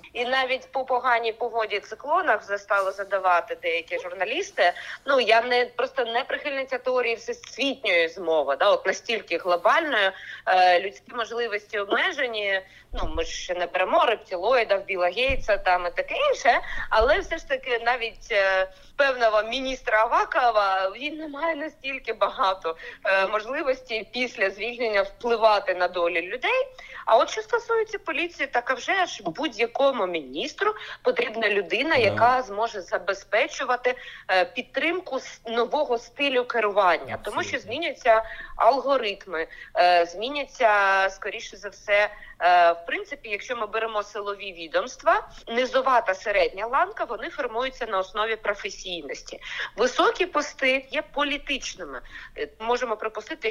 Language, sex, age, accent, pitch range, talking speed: Ukrainian, female, 20-39, native, 195-275 Hz, 125 wpm